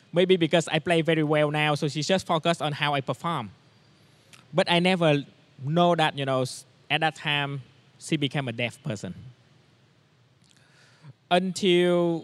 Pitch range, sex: 130-160 Hz, male